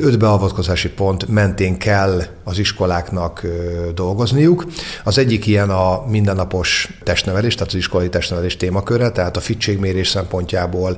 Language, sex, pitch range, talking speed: Hungarian, male, 90-105 Hz, 130 wpm